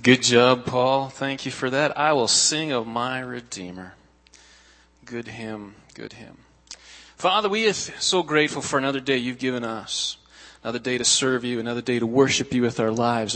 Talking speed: 185 wpm